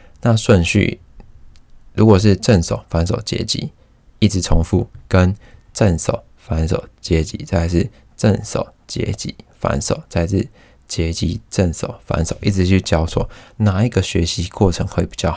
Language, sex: Chinese, male